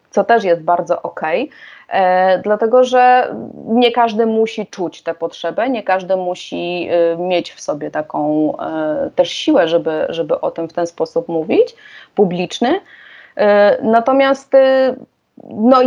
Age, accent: 30-49, native